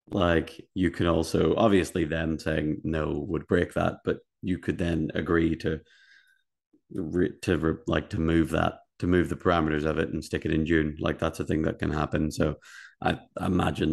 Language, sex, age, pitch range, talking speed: English, male, 30-49, 75-85 Hz, 185 wpm